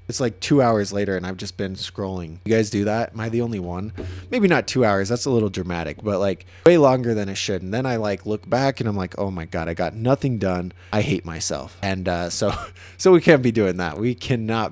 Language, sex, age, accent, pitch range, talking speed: English, male, 20-39, American, 100-130 Hz, 260 wpm